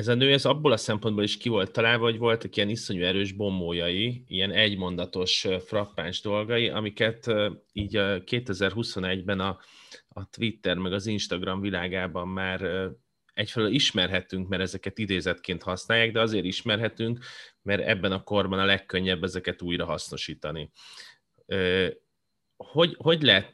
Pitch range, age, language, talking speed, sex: 95-110 Hz, 30-49, Hungarian, 135 wpm, male